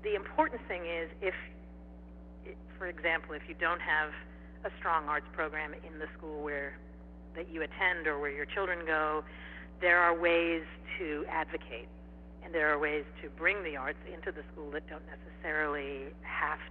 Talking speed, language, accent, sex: 170 wpm, English, American, female